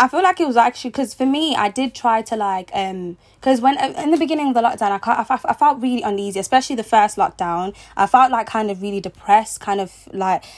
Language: English